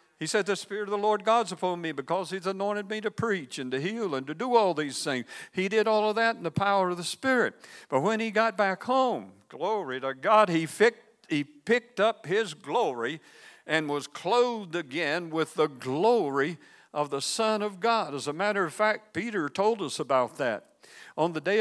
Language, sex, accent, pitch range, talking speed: English, male, American, 150-220 Hz, 215 wpm